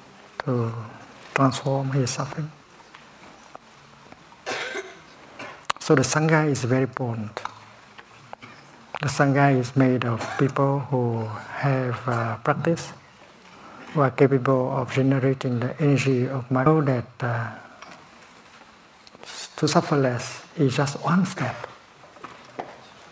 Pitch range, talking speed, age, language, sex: 125-145 Hz, 100 wpm, 60-79, English, male